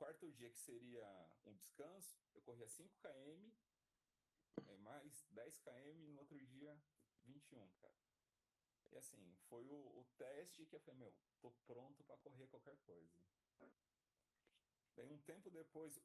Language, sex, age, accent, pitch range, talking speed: Portuguese, male, 30-49, Brazilian, 125-155 Hz, 135 wpm